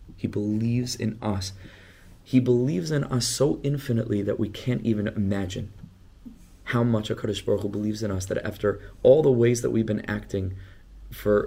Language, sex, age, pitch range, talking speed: English, male, 20-39, 95-115 Hz, 165 wpm